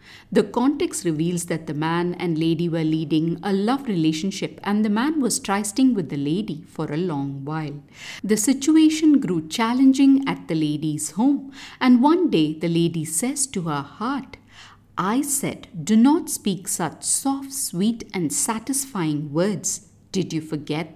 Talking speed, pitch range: 160 wpm, 160-260 Hz